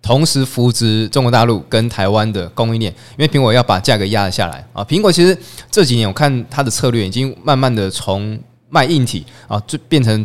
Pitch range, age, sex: 105-140 Hz, 20-39, male